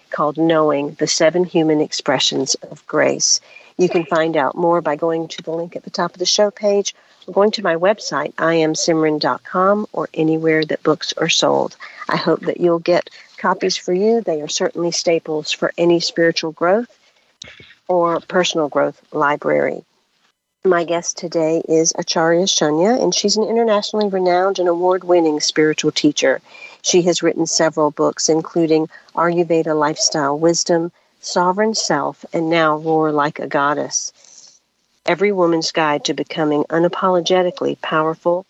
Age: 50-69